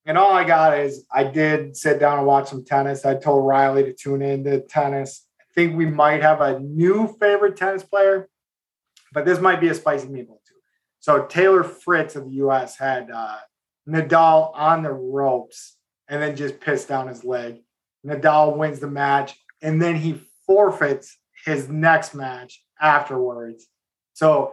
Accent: American